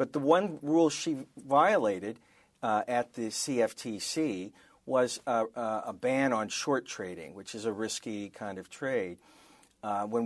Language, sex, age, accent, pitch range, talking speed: English, male, 50-69, American, 110-160 Hz, 150 wpm